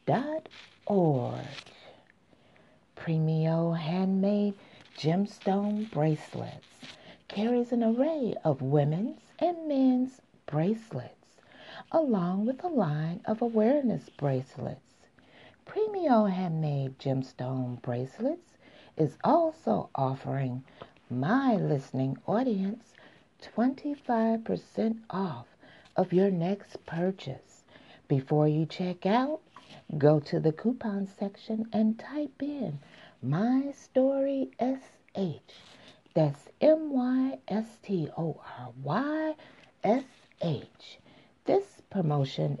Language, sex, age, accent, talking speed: English, female, 50-69, American, 95 wpm